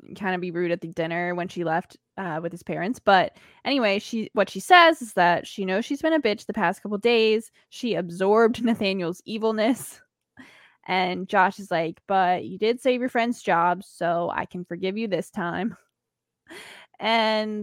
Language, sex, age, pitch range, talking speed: English, female, 20-39, 195-295 Hz, 185 wpm